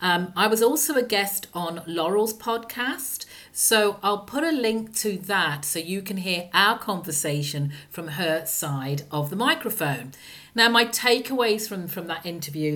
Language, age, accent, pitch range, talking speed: English, 40-59, British, 165-235 Hz, 165 wpm